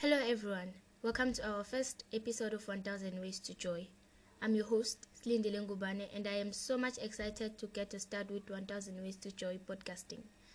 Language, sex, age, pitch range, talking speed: English, female, 20-39, 200-240 Hz, 190 wpm